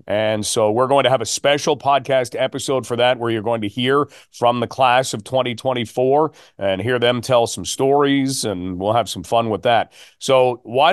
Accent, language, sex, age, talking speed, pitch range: American, English, male, 40-59, 205 wpm, 120-140 Hz